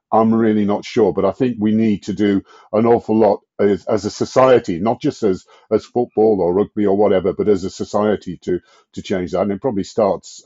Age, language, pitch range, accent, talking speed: 50-69, English, 100-140 Hz, British, 225 wpm